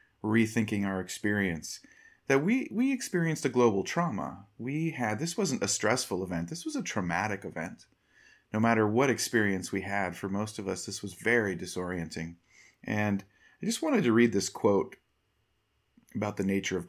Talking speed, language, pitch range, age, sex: 170 wpm, English, 95-120 Hz, 30-49, male